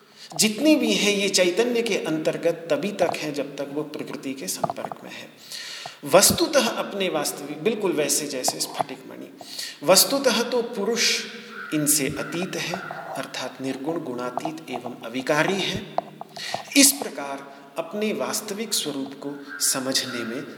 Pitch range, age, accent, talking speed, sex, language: 150-235 Hz, 40-59, native, 135 wpm, male, Hindi